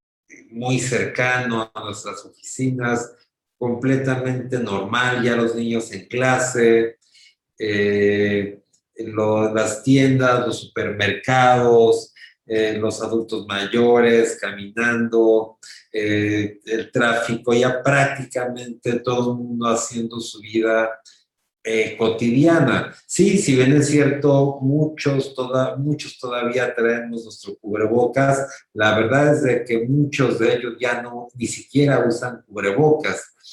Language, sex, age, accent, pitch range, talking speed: Spanish, male, 40-59, Mexican, 110-130 Hz, 115 wpm